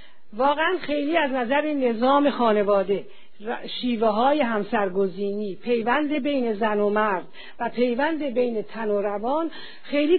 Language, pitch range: Persian, 215-285 Hz